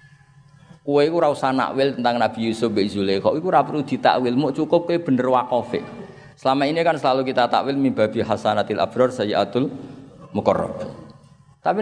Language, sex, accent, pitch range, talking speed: Indonesian, male, native, 120-160 Hz, 150 wpm